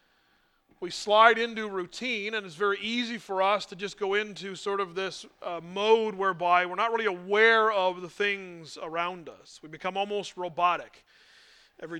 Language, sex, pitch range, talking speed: English, male, 180-220 Hz, 170 wpm